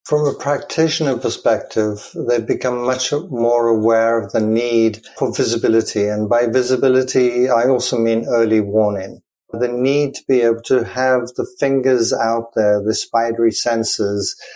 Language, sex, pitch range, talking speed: English, male, 110-125 Hz, 150 wpm